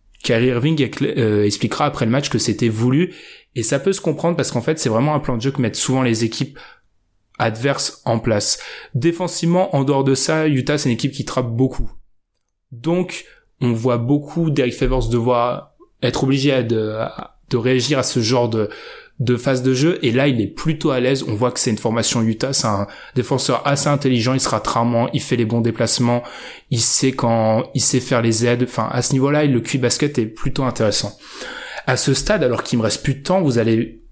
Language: French